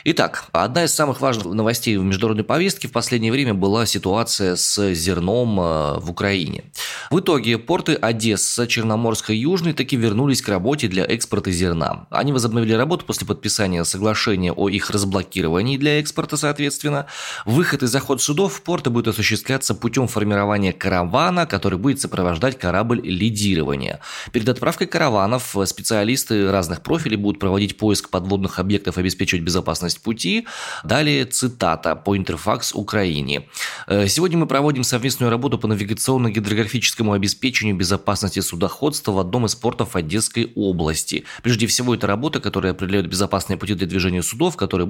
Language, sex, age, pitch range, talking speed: Russian, male, 20-39, 95-125 Hz, 145 wpm